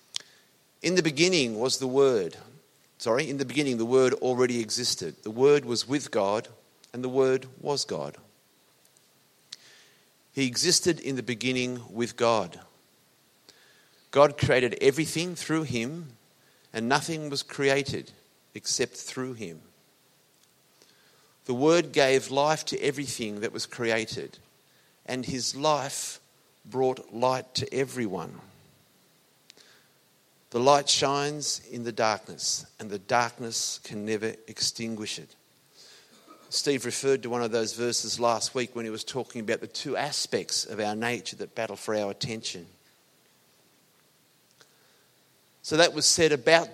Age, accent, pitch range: 50-69, Australian, 120-145 Hz